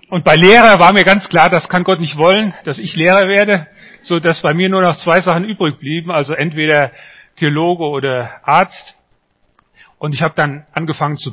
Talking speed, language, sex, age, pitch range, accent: 195 wpm, German, male, 40-59, 140-180 Hz, German